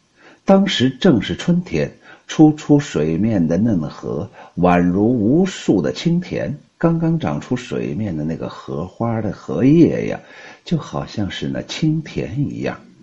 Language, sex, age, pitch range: Chinese, male, 50-69, 110-165 Hz